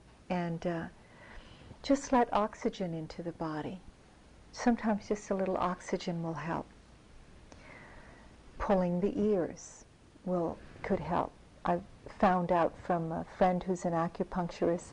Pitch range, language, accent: 170-205 Hz, English, American